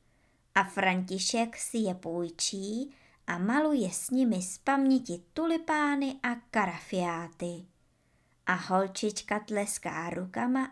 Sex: male